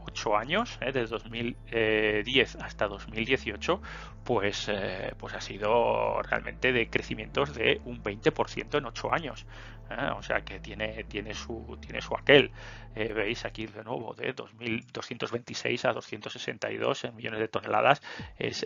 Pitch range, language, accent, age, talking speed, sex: 110-125 Hz, Spanish, Spanish, 30-49, 150 wpm, male